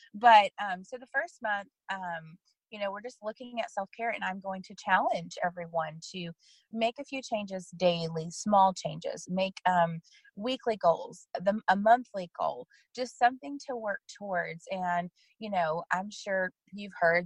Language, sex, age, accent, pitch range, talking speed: English, female, 30-49, American, 175-230 Hz, 165 wpm